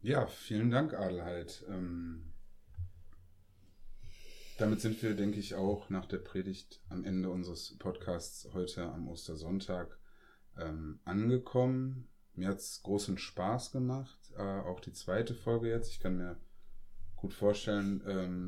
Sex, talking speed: male, 130 wpm